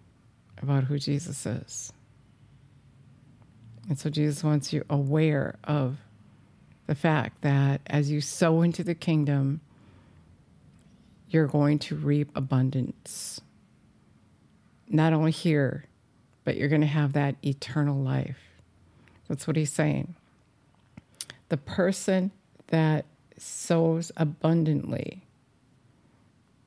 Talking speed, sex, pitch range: 100 wpm, female, 130-155 Hz